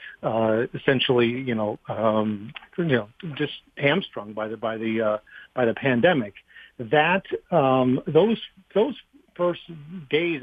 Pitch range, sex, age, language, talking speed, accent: 120-155 Hz, male, 50-69, English, 130 wpm, American